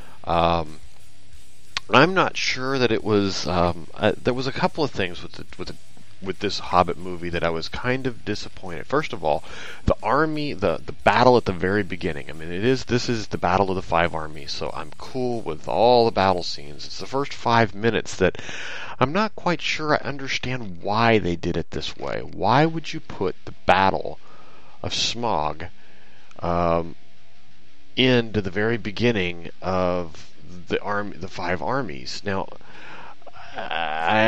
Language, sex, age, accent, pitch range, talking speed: English, male, 30-49, American, 85-110 Hz, 175 wpm